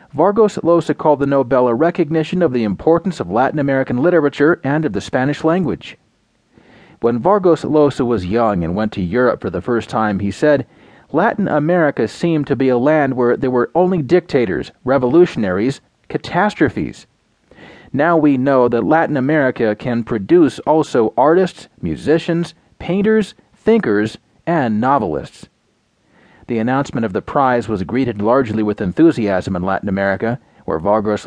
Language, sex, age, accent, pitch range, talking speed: English, male, 40-59, American, 115-160 Hz, 150 wpm